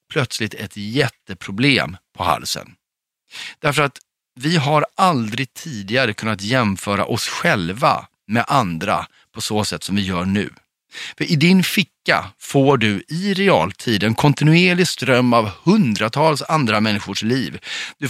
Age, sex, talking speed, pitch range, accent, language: 40-59, male, 135 wpm, 105-140 Hz, native, Swedish